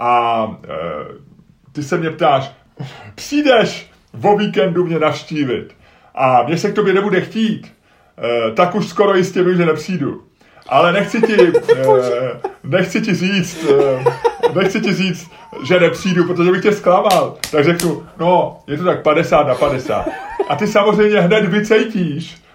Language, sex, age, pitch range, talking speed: Czech, male, 30-49, 165-205 Hz, 135 wpm